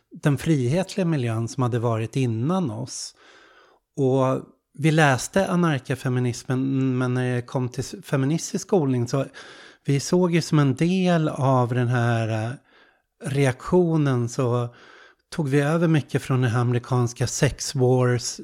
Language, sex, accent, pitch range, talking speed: Swedish, male, native, 125-150 Hz, 135 wpm